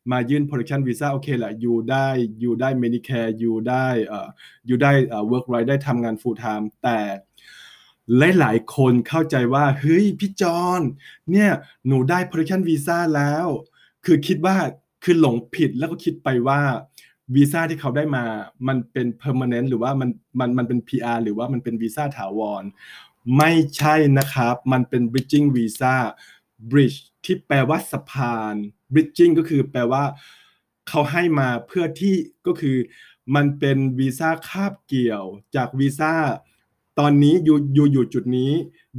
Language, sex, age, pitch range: Thai, male, 20-39, 120-150 Hz